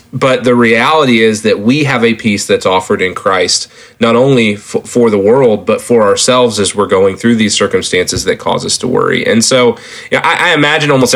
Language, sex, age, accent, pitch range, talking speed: English, male, 30-49, American, 110-145 Hz, 200 wpm